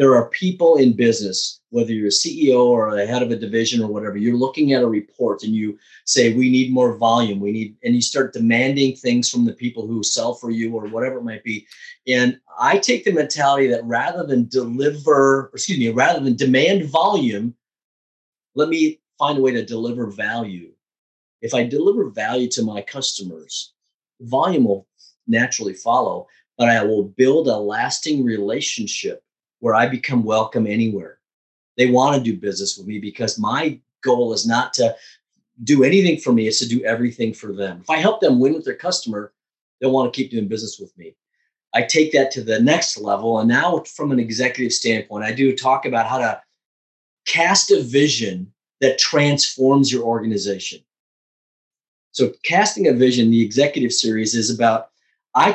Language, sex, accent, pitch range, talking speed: English, male, American, 110-135 Hz, 185 wpm